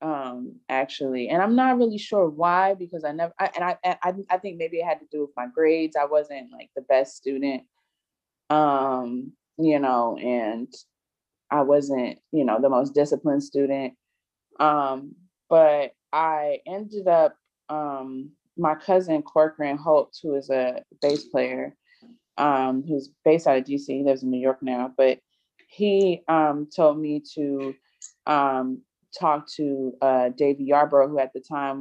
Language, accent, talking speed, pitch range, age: English, American, 160 wpm, 135-160 Hz, 20-39